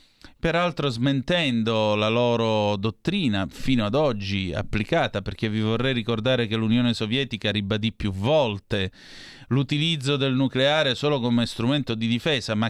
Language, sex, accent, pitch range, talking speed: Italian, male, native, 105-130 Hz, 130 wpm